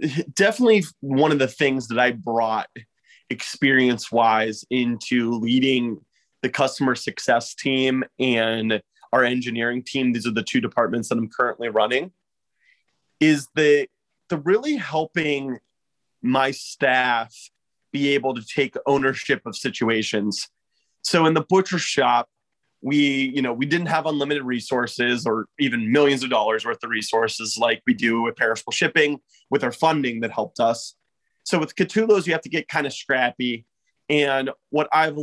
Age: 30-49